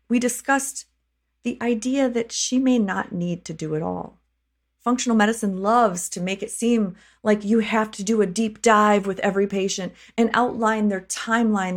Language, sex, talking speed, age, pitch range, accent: English, female, 180 wpm, 30-49, 175-230 Hz, American